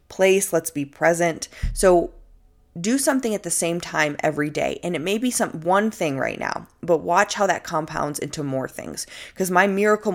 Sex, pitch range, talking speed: female, 145-180 Hz, 195 wpm